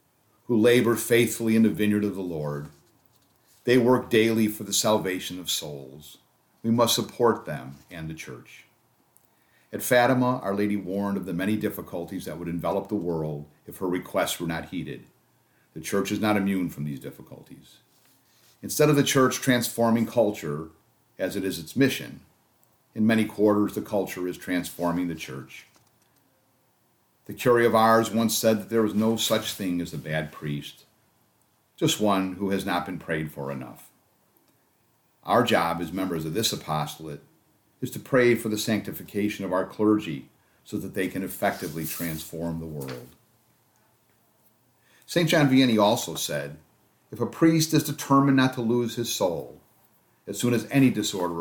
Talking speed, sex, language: 165 wpm, male, English